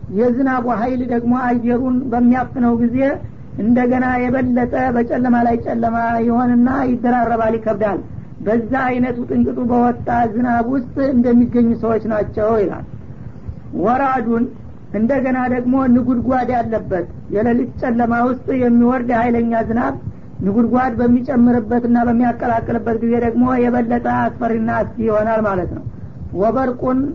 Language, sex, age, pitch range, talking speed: Amharic, female, 60-79, 230-250 Hz, 100 wpm